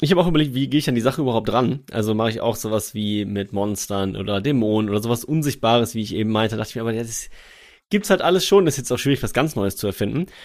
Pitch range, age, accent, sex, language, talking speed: 110-145 Hz, 30-49, German, male, German, 280 wpm